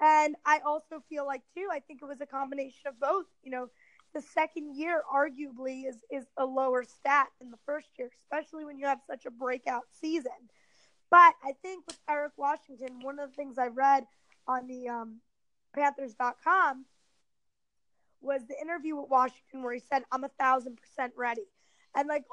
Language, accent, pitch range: English, American, 260-305 Hz